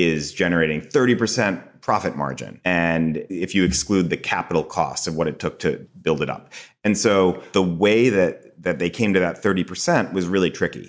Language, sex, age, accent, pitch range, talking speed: English, male, 30-49, American, 80-95 Hz, 185 wpm